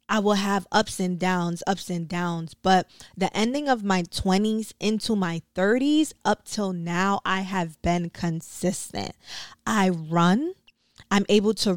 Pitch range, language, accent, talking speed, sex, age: 180-215 Hz, English, American, 155 wpm, female, 20-39